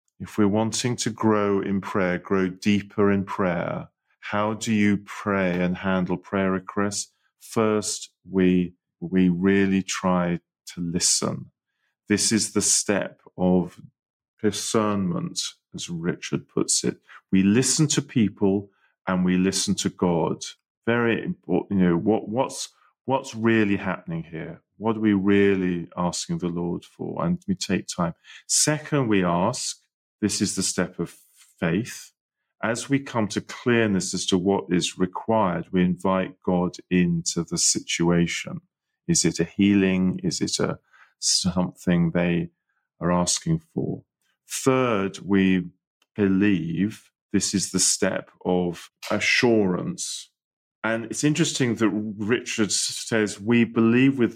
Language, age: English, 40-59